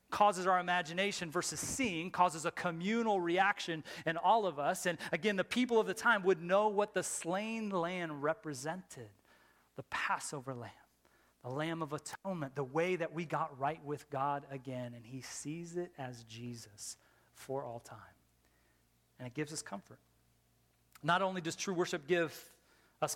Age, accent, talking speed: 30-49, American, 165 wpm